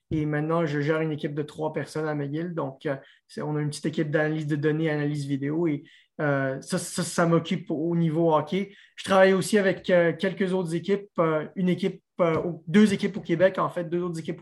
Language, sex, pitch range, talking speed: French, male, 155-185 Hz, 220 wpm